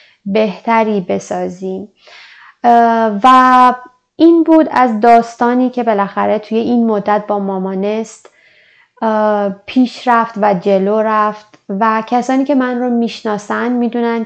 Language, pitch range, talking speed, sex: Persian, 210-235 Hz, 110 wpm, female